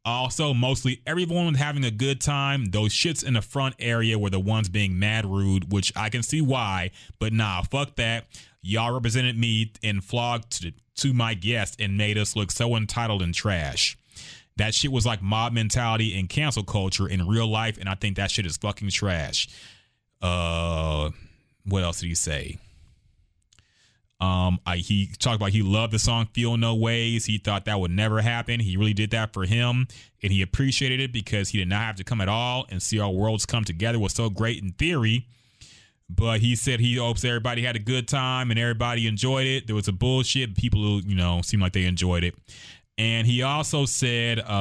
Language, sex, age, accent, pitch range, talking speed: English, male, 30-49, American, 95-120 Hz, 205 wpm